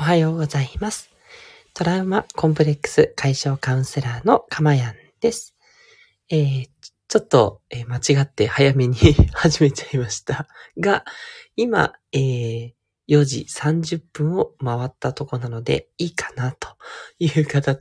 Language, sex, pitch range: Japanese, male, 130-175 Hz